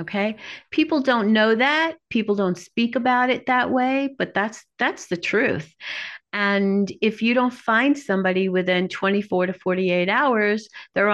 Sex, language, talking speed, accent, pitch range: female, English, 155 wpm, American, 180-245 Hz